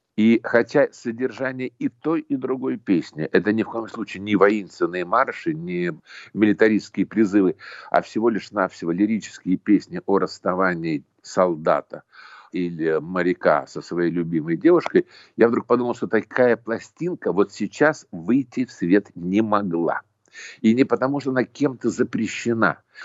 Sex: male